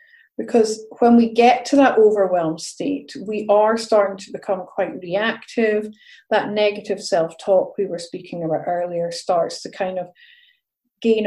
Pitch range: 185-230 Hz